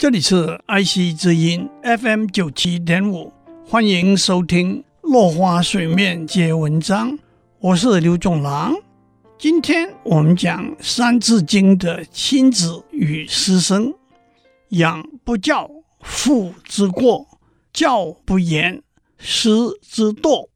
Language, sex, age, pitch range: Chinese, male, 60-79, 170-235 Hz